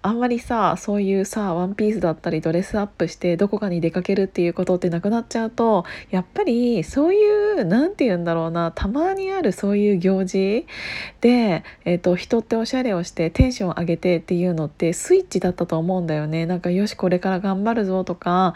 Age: 20-39